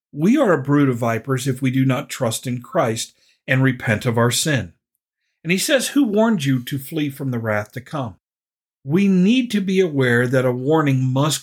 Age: 50-69